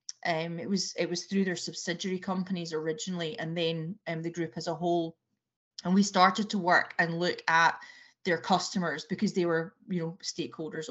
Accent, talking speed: British, 185 wpm